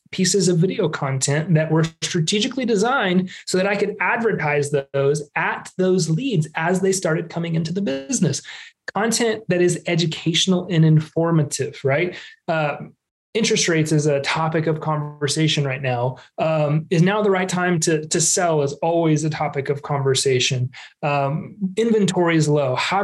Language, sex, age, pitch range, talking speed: English, male, 30-49, 150-190 Hz, 160 wpm